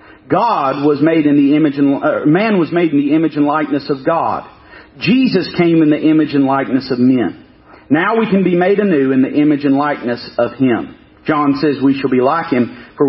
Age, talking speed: 40-59, 220 wpm